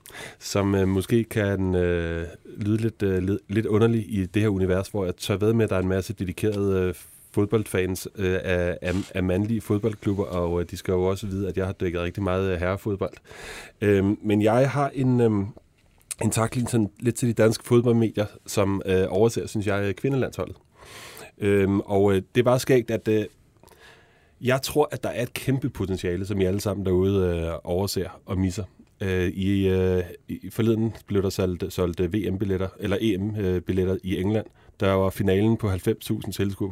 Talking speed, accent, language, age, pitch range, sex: 185 wpm, native, Danish, 30-49, 95-110 Hz, male